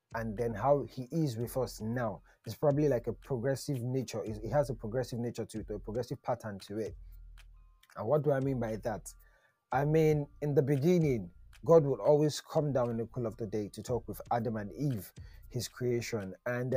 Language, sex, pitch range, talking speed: English, male, 115-145 Hz, 210 wpm